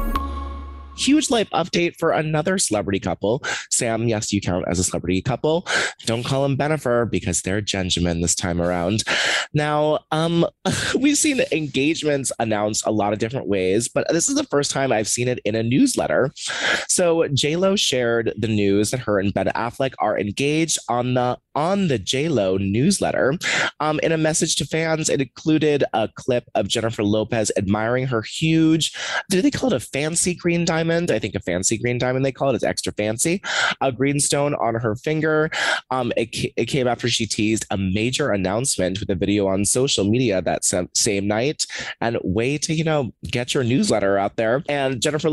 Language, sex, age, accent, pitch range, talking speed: English, male, 20-39, American, 105-155 Hz, 185 wpm